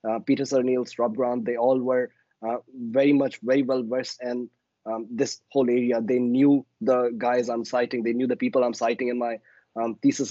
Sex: male